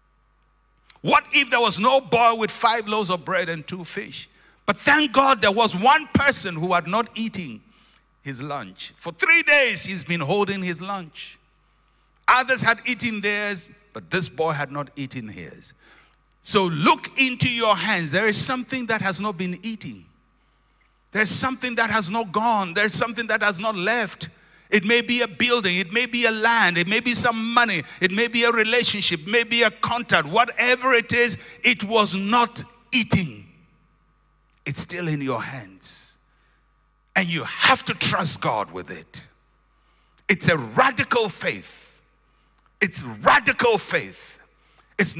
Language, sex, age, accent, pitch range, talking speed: English, male, 60-79, Nigerian, 165-235 Hz, 165 wpm